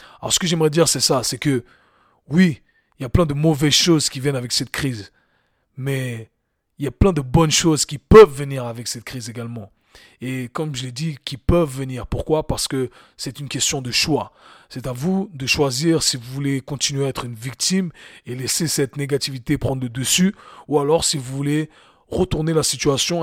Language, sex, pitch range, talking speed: French, male, 125-145 Hz, 210 wpm